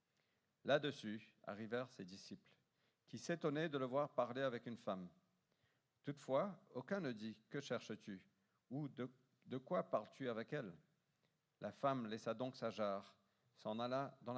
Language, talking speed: French, 140 wpm